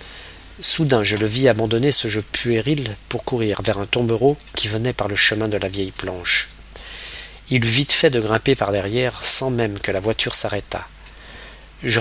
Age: 40-59